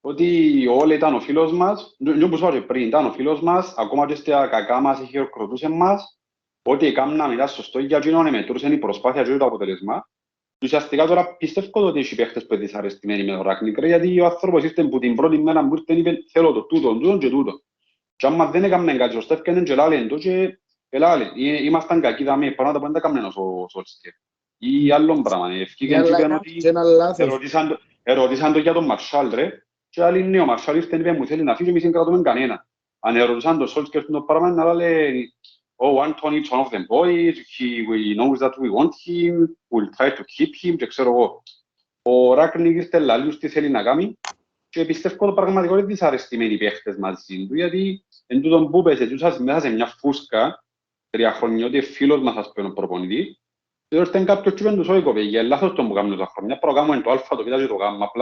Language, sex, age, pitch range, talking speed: Greek, male, 30-49, 130-175 Hz, 90 wpm